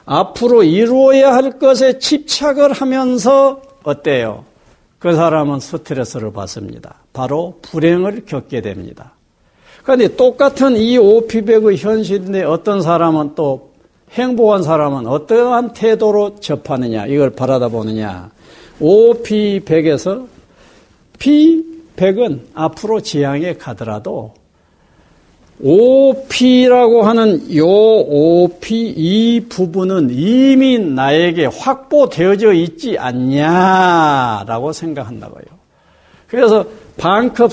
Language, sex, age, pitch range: Korean, male, 60-79, 150-235 Hz